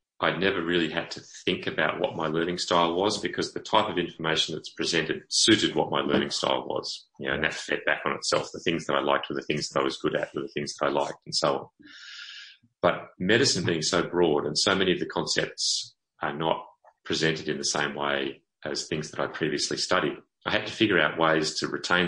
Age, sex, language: 30-49, male, English